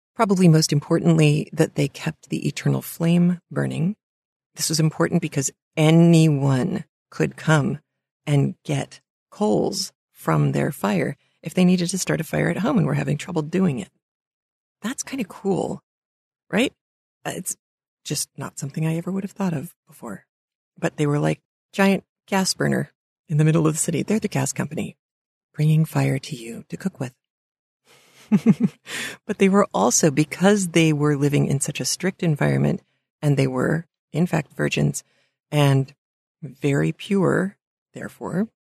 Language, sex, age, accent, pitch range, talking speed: English, female, 40-59, American, 135-180 Hz, 155 wpm